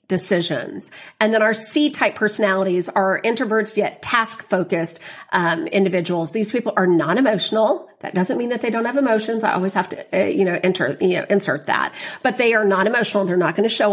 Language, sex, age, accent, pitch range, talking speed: English, female, 40-59, American, 190-270 Hz, 200 wpm